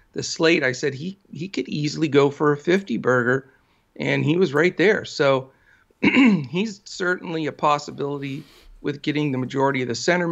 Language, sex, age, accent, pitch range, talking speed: English, male, 50-69, American, 135-180 Hz, 175 wpm